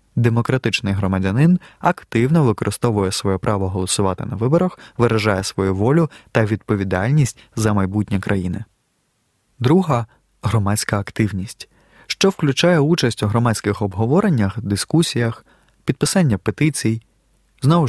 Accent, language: native, Ukrainian